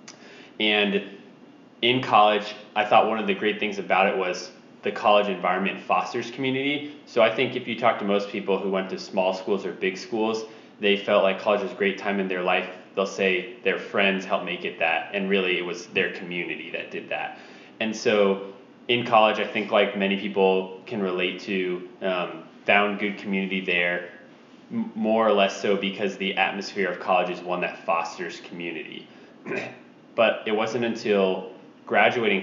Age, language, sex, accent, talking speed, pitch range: 20-39, English, male, American, 185 wpm, 90-105 Hz